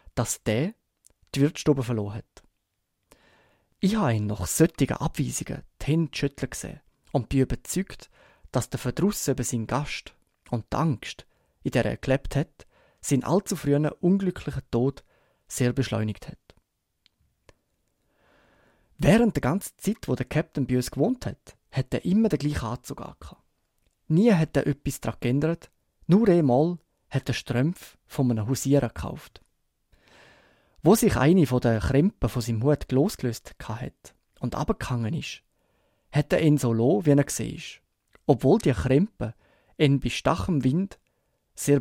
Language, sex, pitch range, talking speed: German, male, 125-155 Hz, 145 wpm